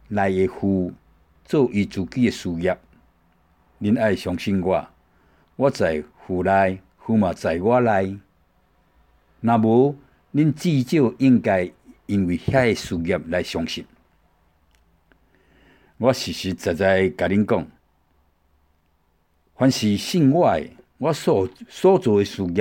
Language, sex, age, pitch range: Chinese, male, 60-79, 80-115 Hz